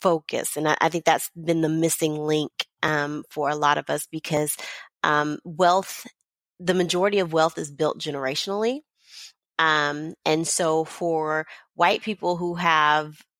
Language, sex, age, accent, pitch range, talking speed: English, female, 30-49, American, 150-175 Hz, 150 wpm